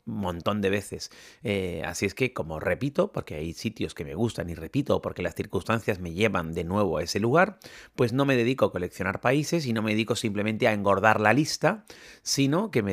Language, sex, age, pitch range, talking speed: Spanish, male, 30-49, 100-130 Hz, 215 wpm